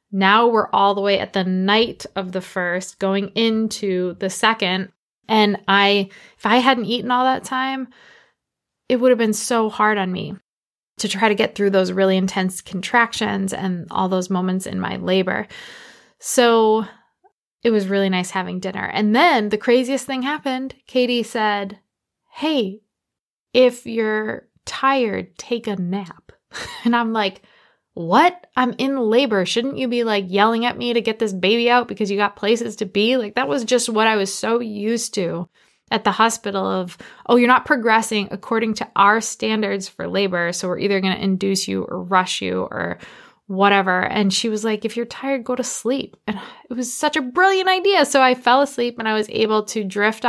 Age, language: 20-39, English